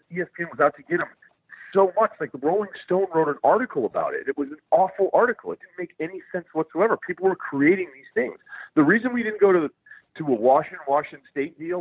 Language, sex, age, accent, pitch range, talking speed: English, male, 40-59, American, 140-210 Hz, 230 wpm